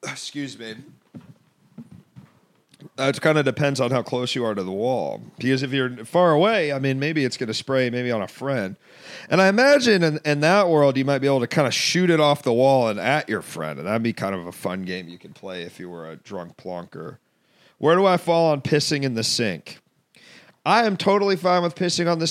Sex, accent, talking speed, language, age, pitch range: male, American, 235 wpm, English, 40-59, 115-155 Hz